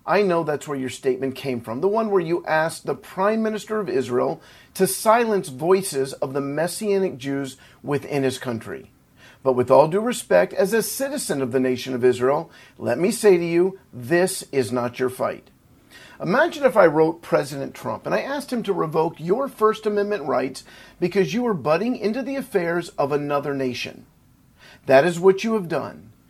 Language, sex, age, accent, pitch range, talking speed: English, male, 50-69, American, 140-215 Hz, 190 wpm